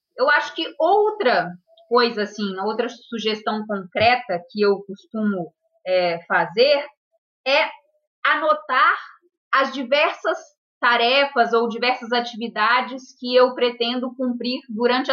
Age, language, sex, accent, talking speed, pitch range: 20-39, Portuguese, female, Brazilian, 105 wpm, 230-290 Hz